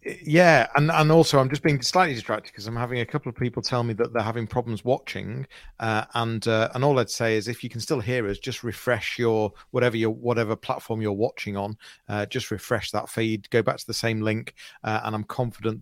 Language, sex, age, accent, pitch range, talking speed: English, male, 40-59, British, 110-140 Hz, 235 wpm